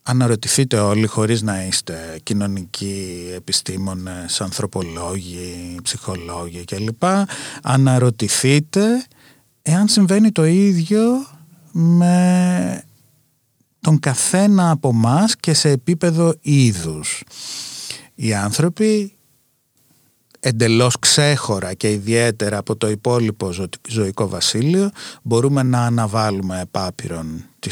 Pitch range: 105-150 Hz